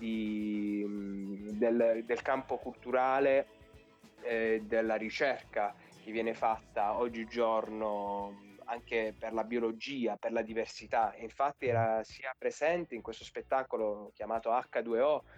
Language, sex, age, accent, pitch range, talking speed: Italian, male, 20-39, native, 105-125 Hz, 110 wpm